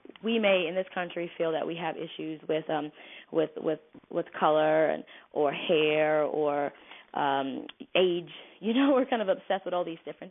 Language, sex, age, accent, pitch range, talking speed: English, female, 20-39, American, 160-185 Hz, 185 wpm